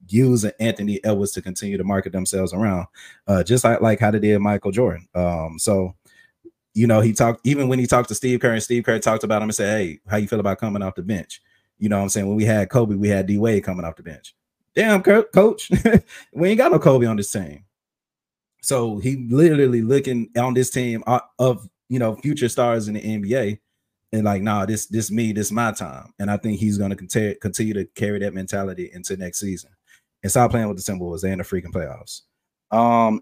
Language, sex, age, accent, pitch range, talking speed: English, male, 30-49, American, 95-115 Hz, 230 wpm